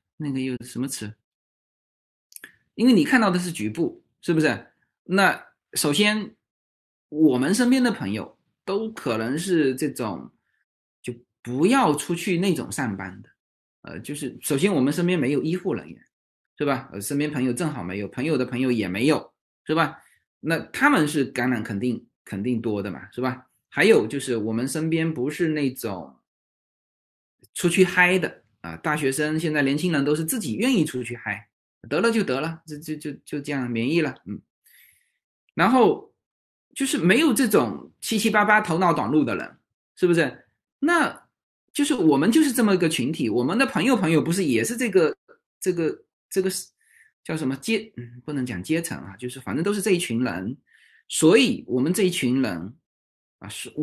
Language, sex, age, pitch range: Chinese, male, 20-39, 125-195 Hz